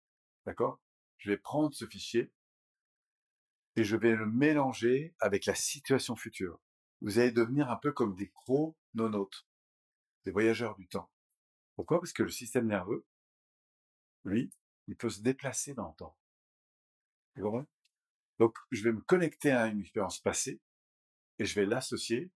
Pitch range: 100-135 Hz